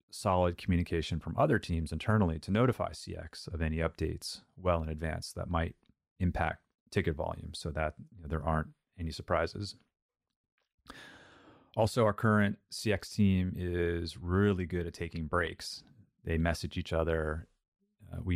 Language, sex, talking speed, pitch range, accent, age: English, male, 135 wpm, 80-95 Hz, American, 30-49